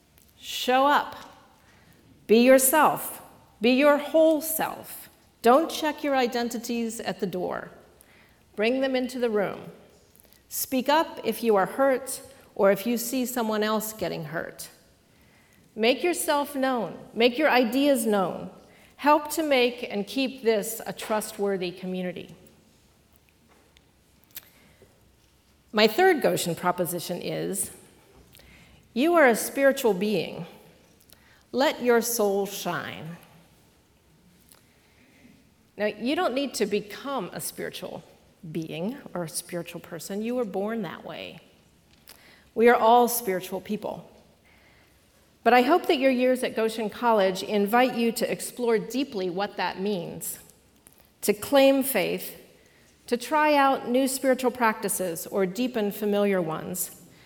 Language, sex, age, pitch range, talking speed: English, female, 40-59, 200-265 Hz, 125 wpm